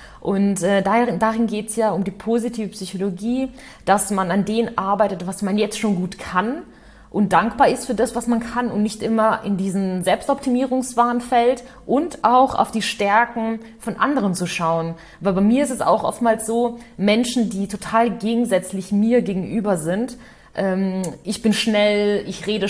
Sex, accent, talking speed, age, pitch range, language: female, German, 175 wpm, 30-49, 195-235 Hz, German